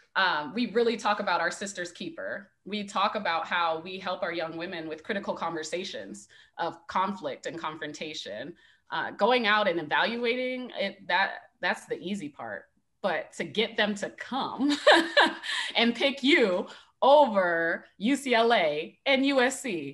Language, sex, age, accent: English, female, 20-39, American